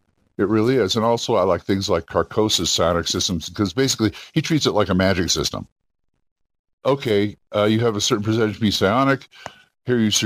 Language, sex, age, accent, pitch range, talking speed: English, male, 50-69, American, 95-120 Hz, 195 wpm